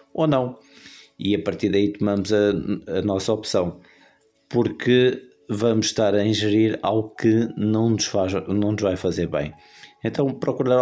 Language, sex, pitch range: Portuguese, male, 95-110 Hz